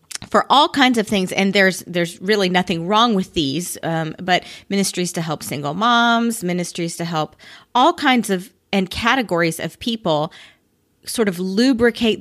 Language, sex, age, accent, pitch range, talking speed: English, female, 30-49, American, 170-220 Hz, 160 wpm